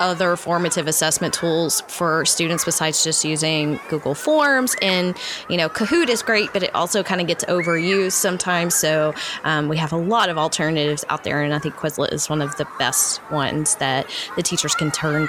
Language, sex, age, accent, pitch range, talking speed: English, female, 20-39, American, 165-205 Hz, 195 wpm